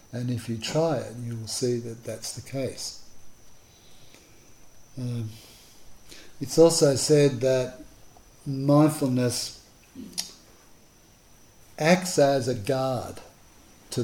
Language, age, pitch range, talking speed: English, 60-79, 110-140 Hz, 100 wpm